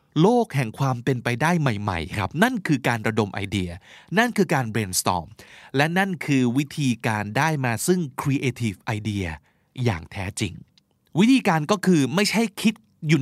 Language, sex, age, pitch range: Thai, male, 20-39, 115-170 Hz